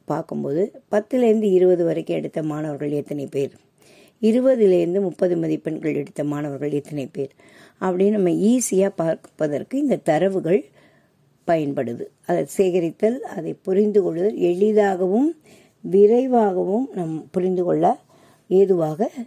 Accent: native